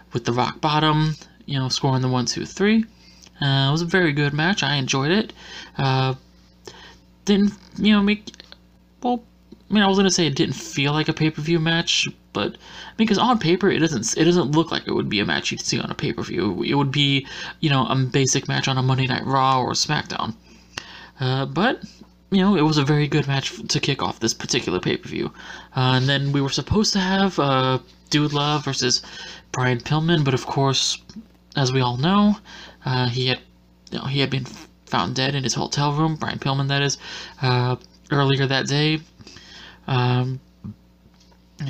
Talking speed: 195 wpm